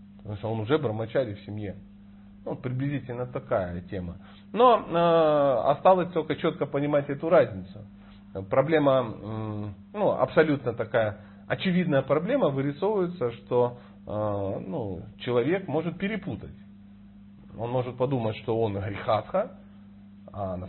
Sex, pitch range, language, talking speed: male, 100-130 Hz, Russian, 115 wpm